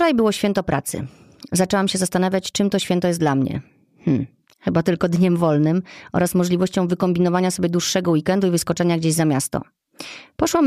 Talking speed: 165 wpm